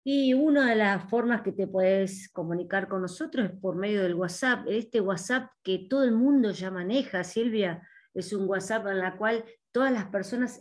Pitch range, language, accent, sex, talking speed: 190-255 Hz, Spanish, Argentinian, female, 190 wpm